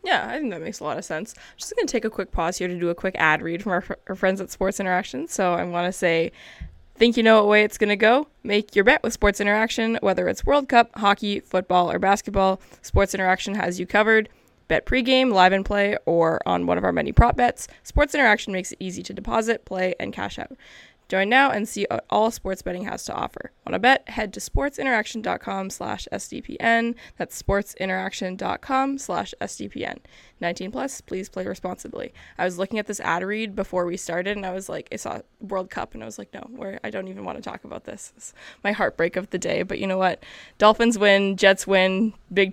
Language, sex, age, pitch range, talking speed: English, female, 20-39, 185-220 Hz, 225 wpm